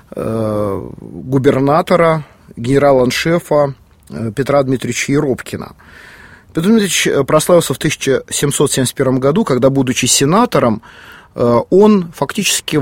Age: 30-49